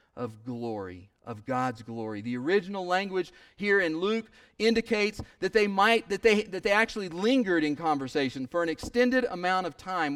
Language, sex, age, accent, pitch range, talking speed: English, male, 40-59, American, 150-235 Hz, 170 wpm